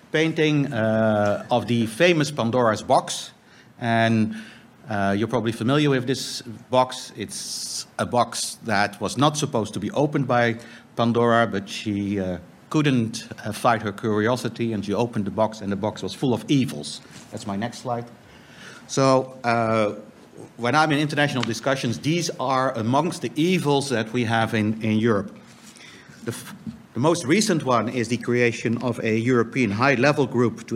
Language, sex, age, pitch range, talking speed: English, male, 50-69, 110-130 Hz, 160 wpm